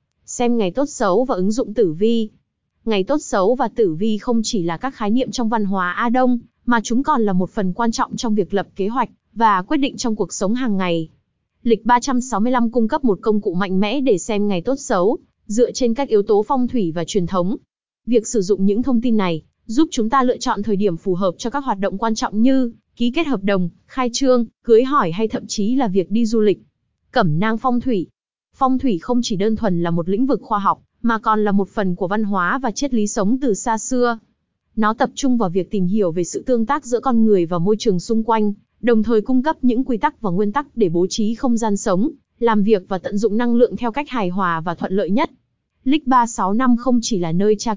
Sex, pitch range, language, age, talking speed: female, 200-245 Hz, Vietnamese, 20-39, 250 wpm